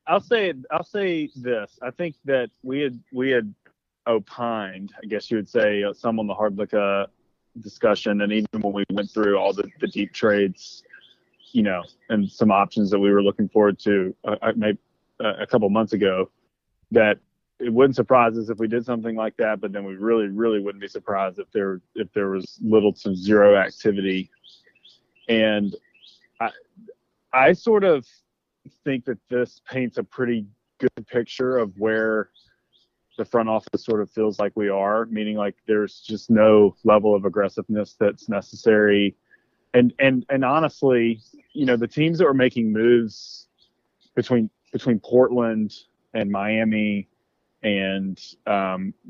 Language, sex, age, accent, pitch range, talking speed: English, male, 30-49, American, 105-120 Hz, 165 wpm